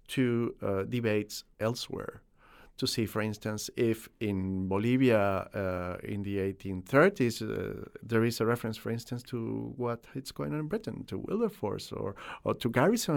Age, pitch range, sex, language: 50-69, 100-130 Hz, male, English